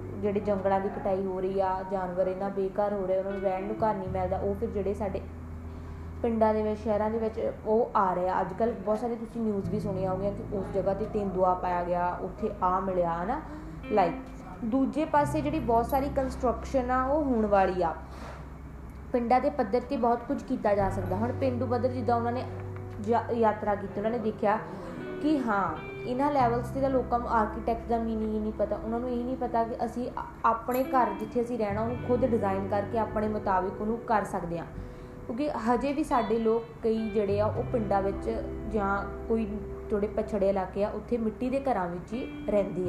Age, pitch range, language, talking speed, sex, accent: 20-39, 185-235 Hz, Hindi, 175 wpm, female, native